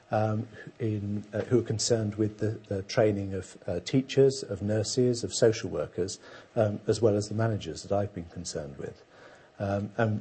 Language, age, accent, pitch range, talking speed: English, 50-69, British, 100-120 Hz, 190 wpm